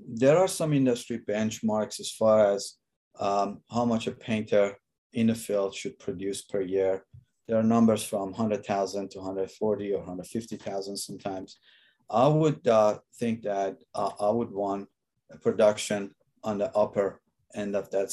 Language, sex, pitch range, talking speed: English, male, 95-110 Hz, 155 wpm